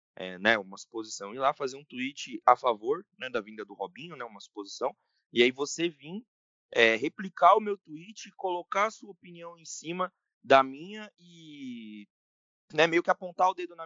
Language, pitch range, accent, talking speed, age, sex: Portuguese, 110-185 Hz, Brazilian, 190 wpm, 20-39, male